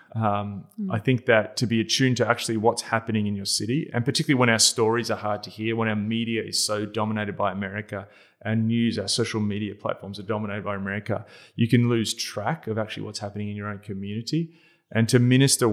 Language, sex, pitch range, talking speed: English, male, 105-120 Hz, 215 wpm